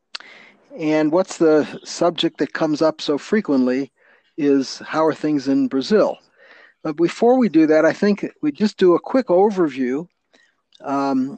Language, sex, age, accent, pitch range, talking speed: English, male, 50-69, American, 145-190 Hz, 155 wpm